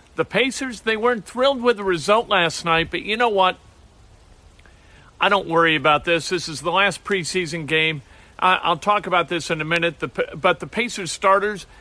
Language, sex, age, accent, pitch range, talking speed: English, male, 50-69, American, 165-215 Hz, 185 wpm